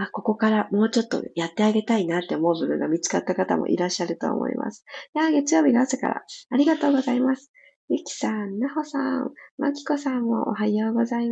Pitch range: 190-275 Hz